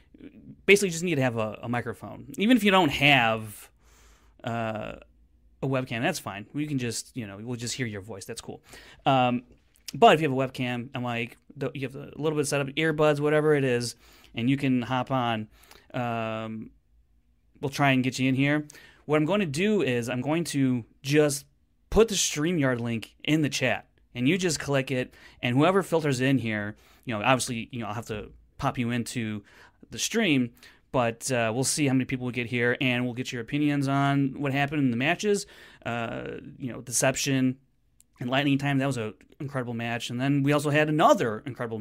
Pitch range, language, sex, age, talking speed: 120-140 Hz, English, male, 30-49, 205 wpm